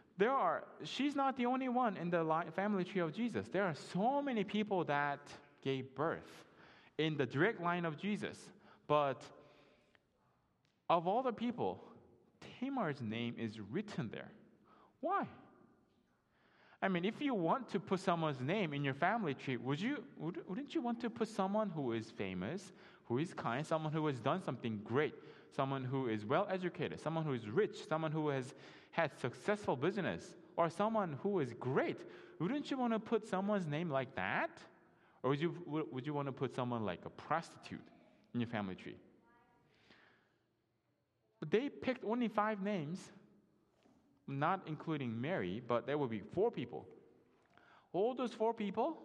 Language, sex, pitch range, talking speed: English, male, 135-210 Hz, 165 wpm